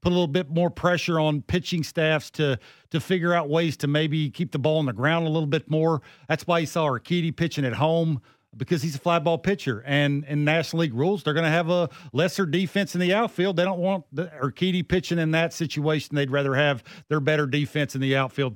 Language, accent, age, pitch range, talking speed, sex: English, American, 40-59, 135-170 Hz, 235 wpm, male